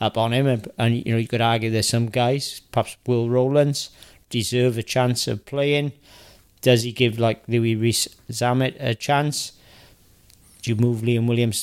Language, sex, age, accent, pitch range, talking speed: English, male, 40-59, British, 110-125 Hz, 175 wpm